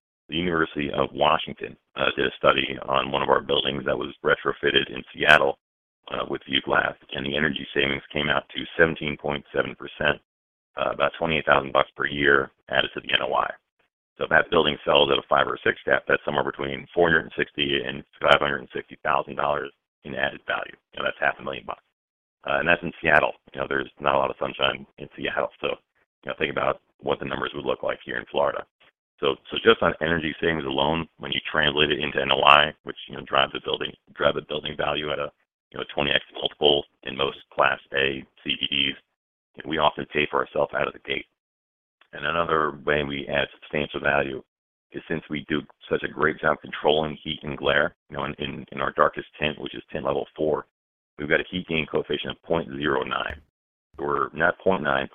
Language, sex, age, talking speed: English, male, 40-59, 200 wpm